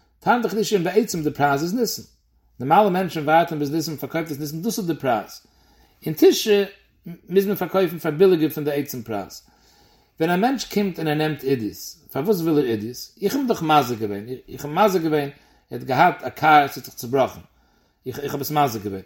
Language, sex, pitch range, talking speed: English, male, 145-205 Hz, 125 wpm